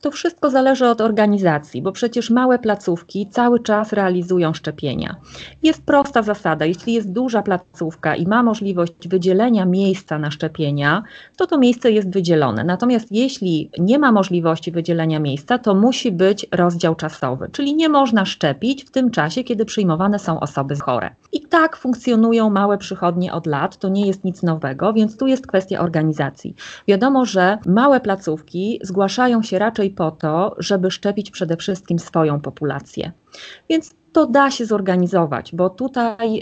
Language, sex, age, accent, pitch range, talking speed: Polish, female, 30-49, native, 170-230 Hz, 155 wpm